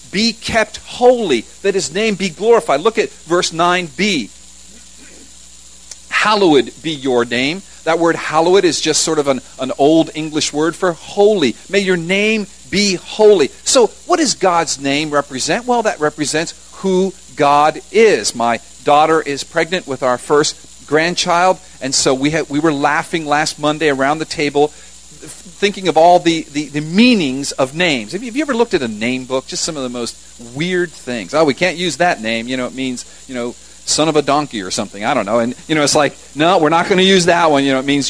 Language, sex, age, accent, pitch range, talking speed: English, male, 50-69, American, 140-190 Hz, 210 wpm